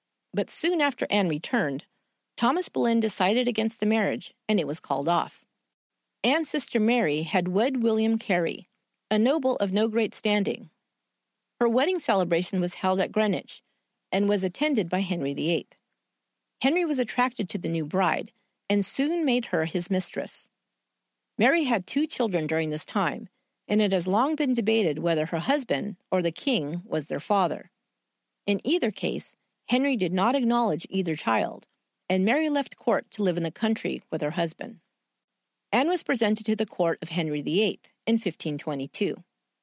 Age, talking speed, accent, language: 40-59, 165 wpm, American, English